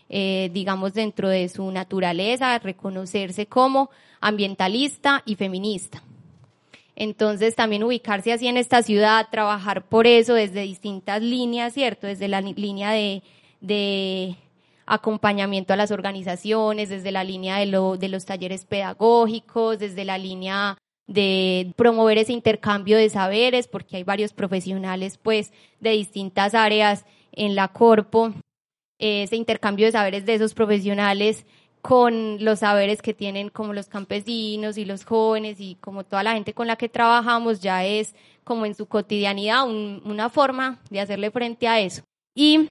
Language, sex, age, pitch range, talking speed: Spanish, female, 20-39, 195-230 Hz, 145 wpm